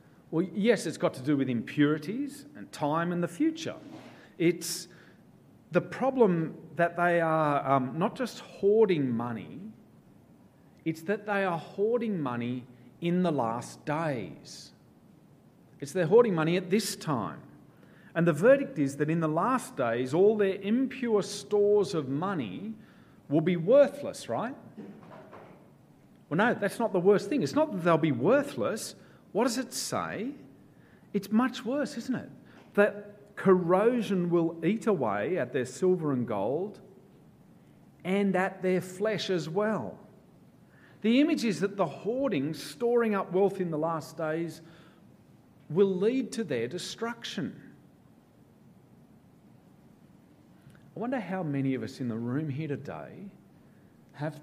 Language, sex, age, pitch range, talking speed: English, male, 40-59, 150-210 Hz, 140 wpm